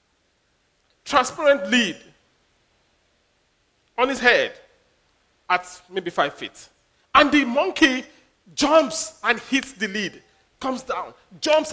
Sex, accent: male, Nigerian